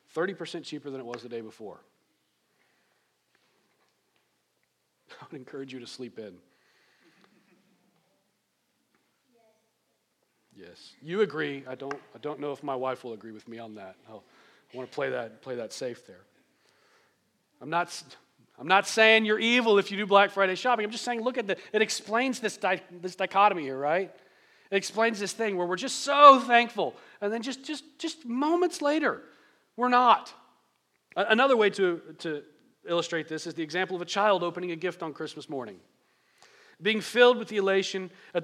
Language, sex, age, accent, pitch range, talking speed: English, male, 40-59, American, 165-230 Hz, 170 wpm